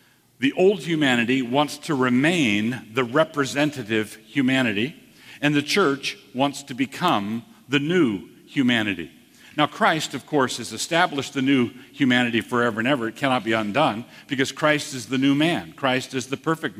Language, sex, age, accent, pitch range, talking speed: English, male, 50-69, American, 125-155 Hz, 155 wpm